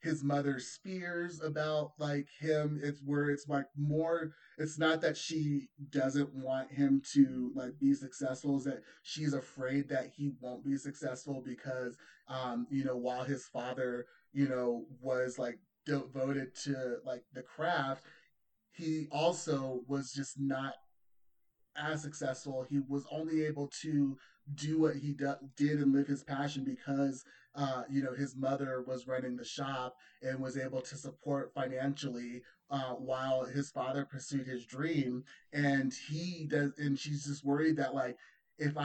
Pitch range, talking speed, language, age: 130-150 Hz, 155 wpm, English, 30-49